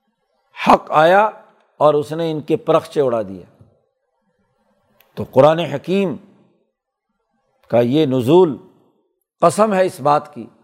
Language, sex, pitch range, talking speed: Urdu, male, 140-180 Hz, 120 wpm